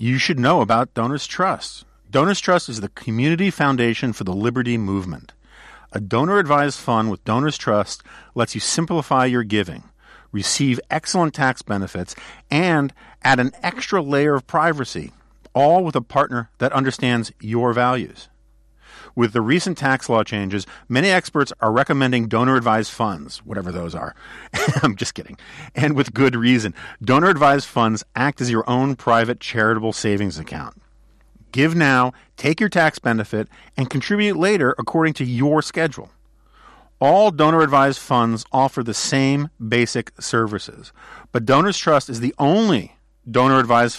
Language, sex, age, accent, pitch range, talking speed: English, male, 50-69, American, 115-150 Hz, 145 wpm